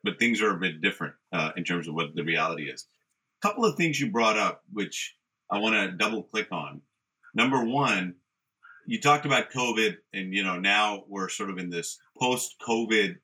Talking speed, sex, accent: 200 wpm, male, American